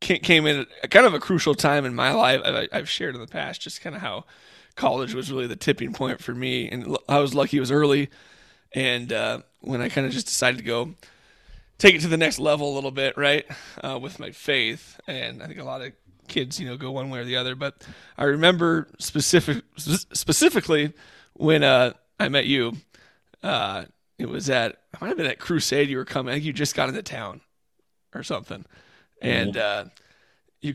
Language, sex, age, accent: English, male, 20-39, American